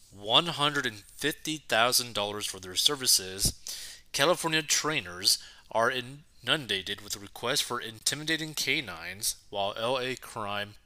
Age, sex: 20-39, male